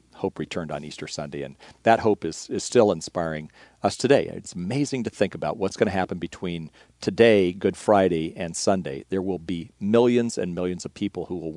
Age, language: 50-69, English